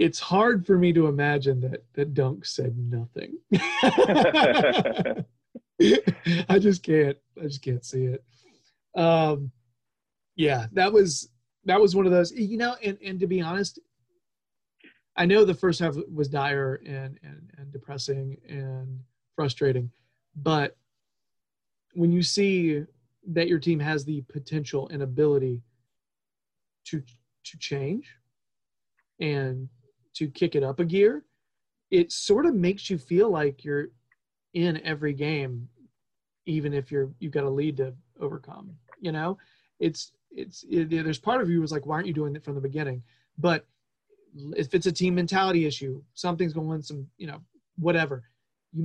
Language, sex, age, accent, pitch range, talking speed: English, male, 40-59, American, 135-175 Hz, 155 wpm